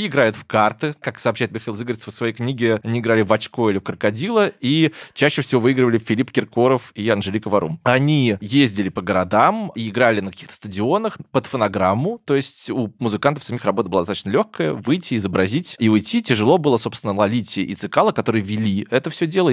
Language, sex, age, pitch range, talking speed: Russian, male, 20-39, 105-150 Hz, 190 wpm